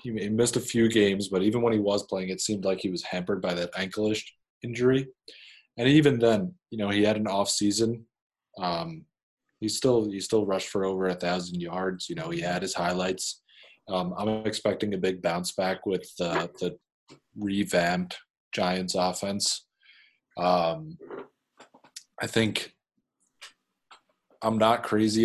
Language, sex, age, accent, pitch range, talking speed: English, male, 20-39, American, 90-110 Hz, 160 wpm